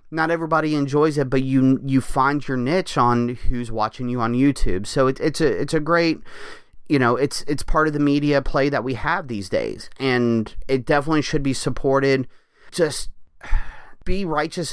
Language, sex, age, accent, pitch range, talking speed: English, male, 30-49, American, 120-145 Hz, 185 wpm